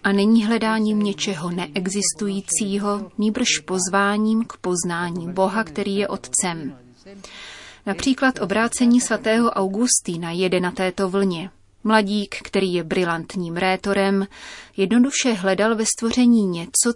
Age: 30-49